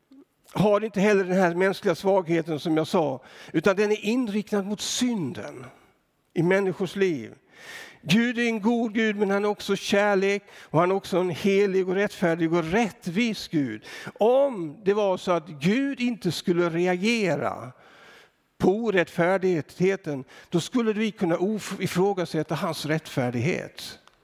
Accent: native